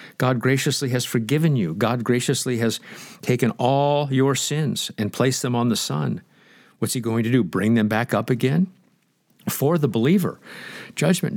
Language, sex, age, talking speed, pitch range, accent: English, male, 50-69, 170 wpm, 110-135 Hz, American